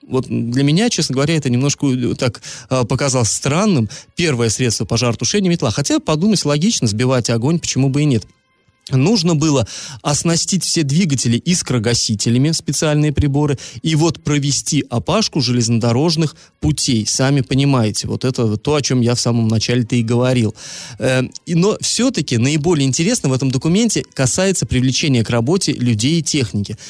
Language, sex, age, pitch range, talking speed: Russian, male, 20-39, 120-160 Hz, 145 wpm